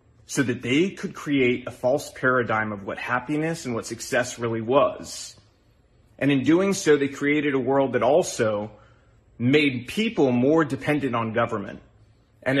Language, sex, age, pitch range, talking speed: English, male, 30-49, 115-155 Hz, 155 wpm